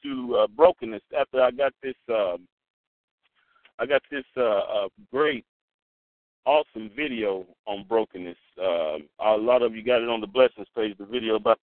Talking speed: 165 wpm